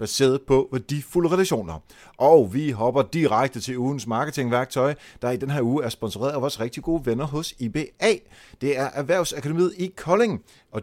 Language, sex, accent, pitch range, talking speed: Danish, male, native, 105-140 Hz, 170 wpm